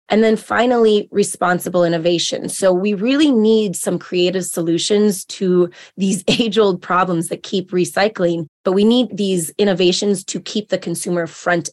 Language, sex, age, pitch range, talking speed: English, female, 20-39, 175-205 Hz, 150 wpm